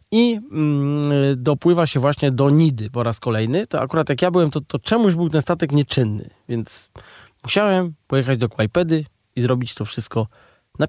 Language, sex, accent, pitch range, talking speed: Polish, male, native, 130-185 Hz, 170 wpm